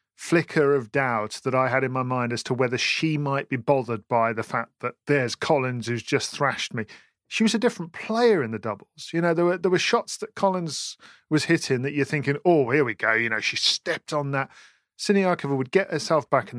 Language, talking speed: English, 230 wpm